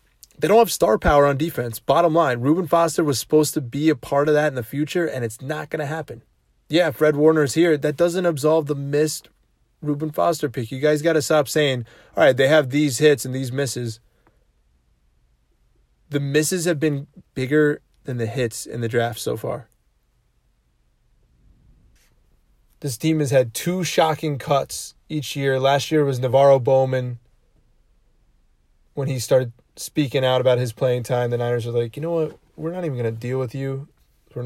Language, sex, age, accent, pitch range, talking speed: English, male, 20-39, American, 125-155 Hz, 185 wpm